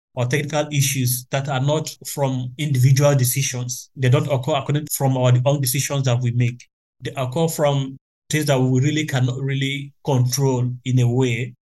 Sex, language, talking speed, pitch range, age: male, English, 175 wpm, 125-145 Hz, 30-49